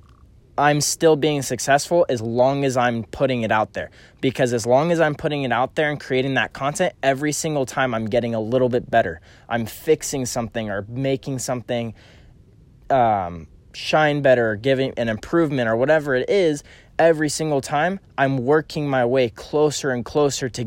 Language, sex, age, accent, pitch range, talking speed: English, male, 20-39, American, 115-150 Hz, 180 wpm